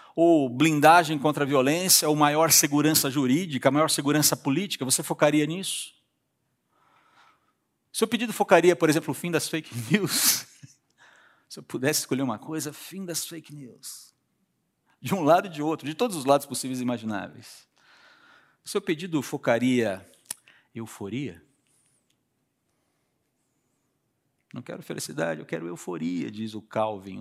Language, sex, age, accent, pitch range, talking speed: Portuguese, male, 50-69, Brazilian, 125-165 Hz, 135 wpm